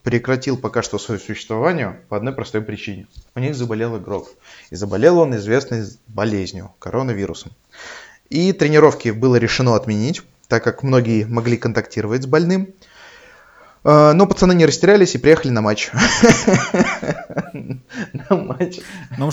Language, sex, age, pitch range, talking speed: Russian, male, 20-39, 105-130 Hz, 125 wpm